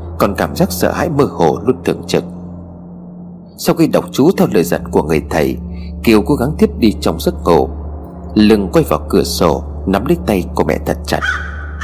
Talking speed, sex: 205 wpm, male